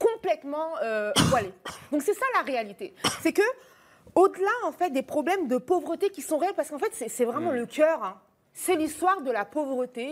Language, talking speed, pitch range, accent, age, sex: French, 200 wpm, 270-370 Hz, French, 30-49, female